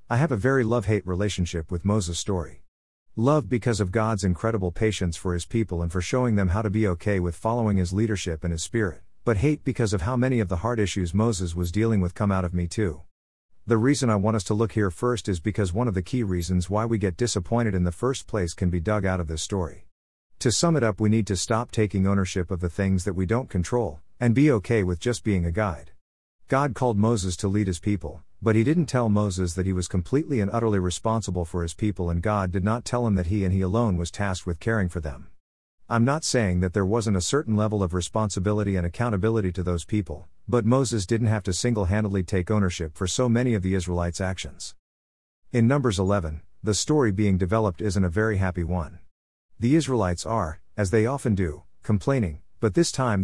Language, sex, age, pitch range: English, male, 50-69, 90-115 Hz